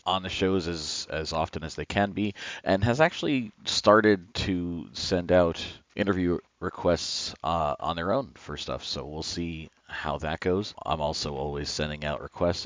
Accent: American